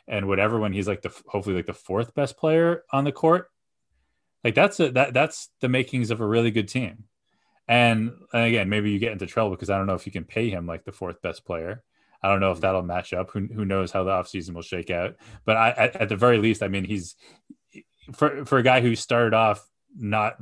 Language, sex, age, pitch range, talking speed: English, male, 20-39, 95-115 Hz, 245 wpm